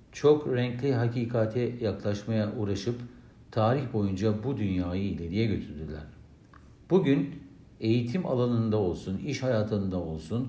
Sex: male